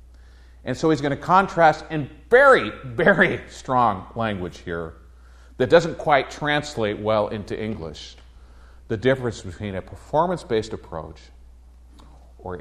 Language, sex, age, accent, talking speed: English, male, 50-69, American, 125 wpm